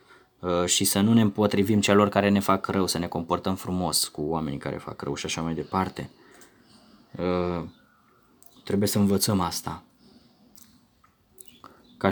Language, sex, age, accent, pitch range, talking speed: Romanian, male, 20-39, native, 100-130 Hz, 140 wpm